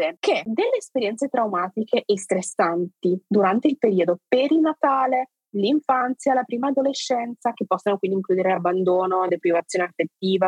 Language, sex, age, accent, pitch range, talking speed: Italian, female, 20-39, native, 180-230 Hz, 120 wpm